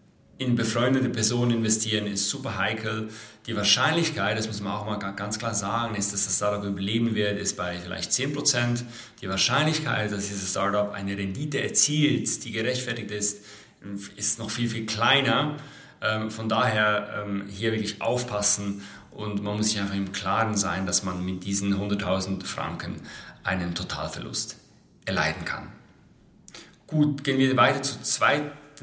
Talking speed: 150 wpm